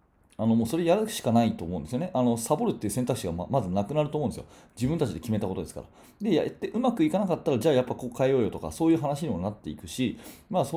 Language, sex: Japanese, male